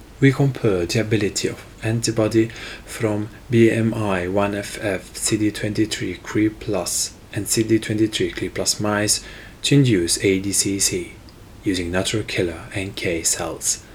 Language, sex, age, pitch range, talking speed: English, male, 30-49, 95-110 Hz, 120 wpm